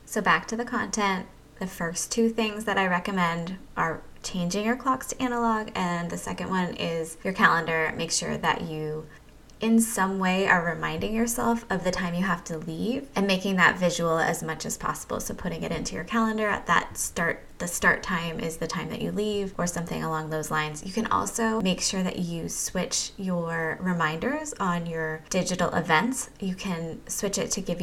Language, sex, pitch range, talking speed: English, female, 165-210 Hz, 200 wpm